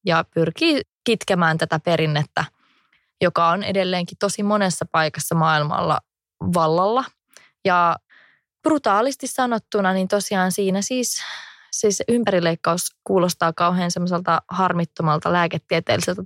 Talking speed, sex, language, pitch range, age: 95 wpm, female, English, 170-205 Hz, 20-39